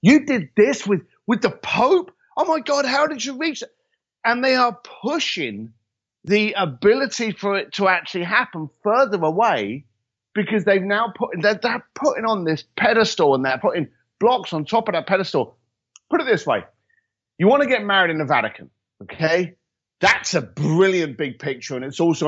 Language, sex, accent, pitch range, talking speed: English, male, British, 145-230 Hz, 180 wpm